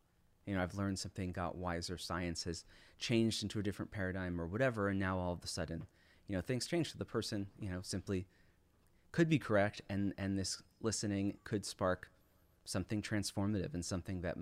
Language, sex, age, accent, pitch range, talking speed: English, male, 30-49, American, 90-105 Hz, 185 wpm